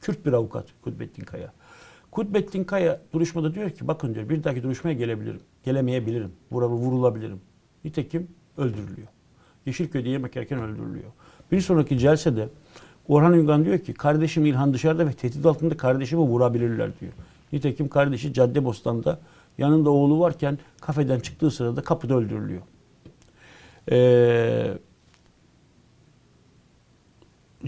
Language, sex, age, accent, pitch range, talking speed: Turkish, male, 60-79, native, 130-165 Hz, 115 wpm